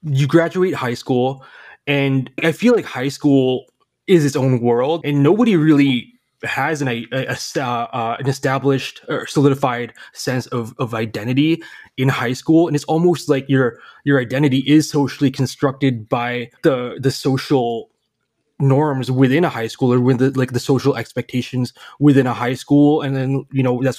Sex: male